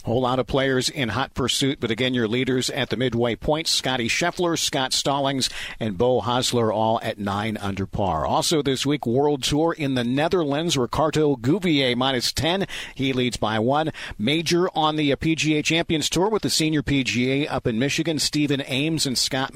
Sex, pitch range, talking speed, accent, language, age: male, 125-155 Hz, 185 wpm, American, English, 50-69